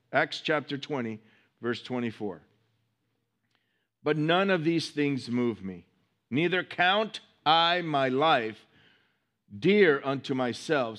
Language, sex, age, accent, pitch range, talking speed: English, male, 50-69, American, 135-205 Hz, 110 wpm